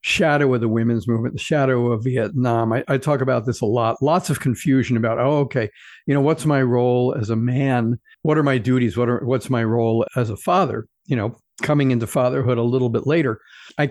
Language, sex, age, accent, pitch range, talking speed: English, male, 50-69, American, 120-145 Hz, 225 wpm